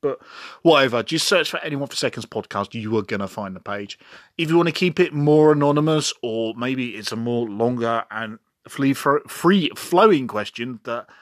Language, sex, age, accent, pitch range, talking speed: English, male, 30-49, British, 110-140 Hz, 185 wpm